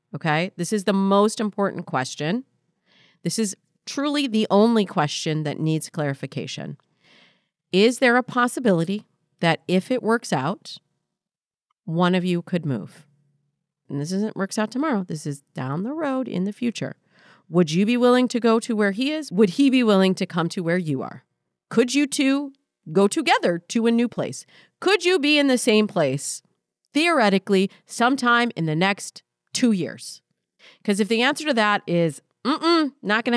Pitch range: 175-235 Hz